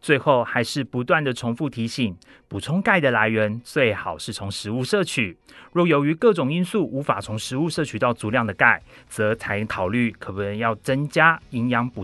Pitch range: 110-145 Hz